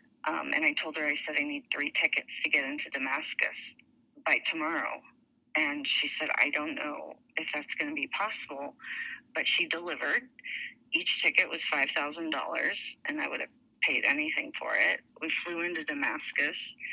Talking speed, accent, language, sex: 170 wpm, American, English, female